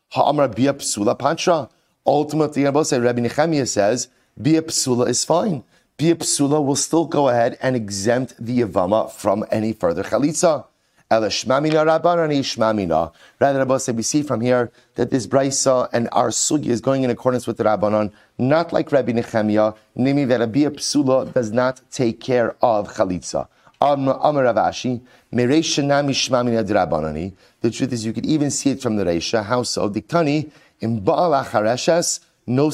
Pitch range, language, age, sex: 120-150 Hz, English, 30-49, male